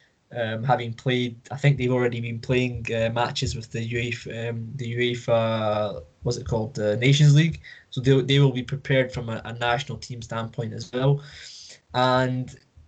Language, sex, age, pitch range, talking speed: English, male, 10-29, 115-140 Hz, 180 wpm